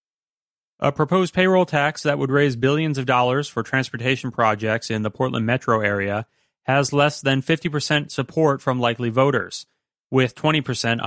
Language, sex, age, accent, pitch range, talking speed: English, male, 30-49, American, 115-145 Hz, 150 wpm